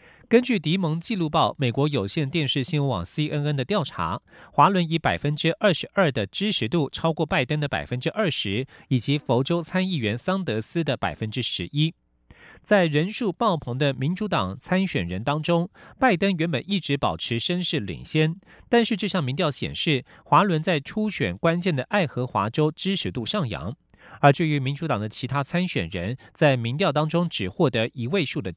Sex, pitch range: male, 130-180 Hz